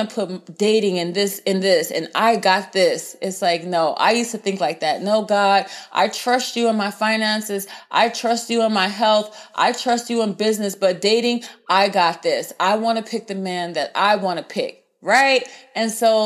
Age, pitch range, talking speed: 30-49, 180-220 Hz, 215 wpm